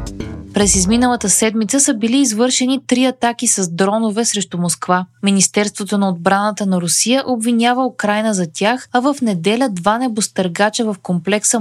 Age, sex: 20-39, female